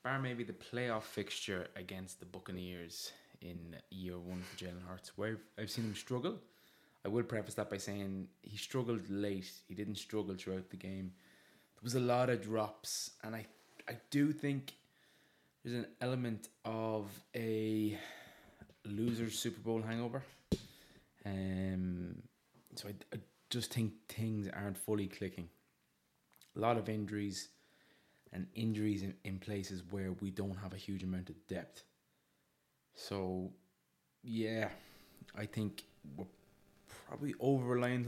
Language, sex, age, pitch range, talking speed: English, male, 20-39, 95-110 Hz, 140 wpm